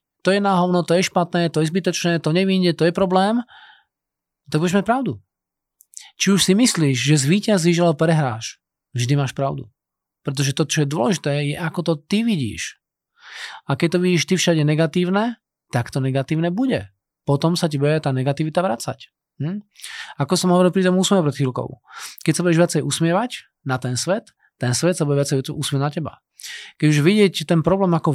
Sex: male